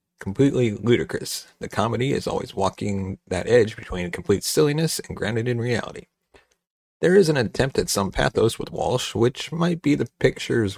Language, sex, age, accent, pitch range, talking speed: English, male, 40-59, American, 110-170 Hz, 165 wpm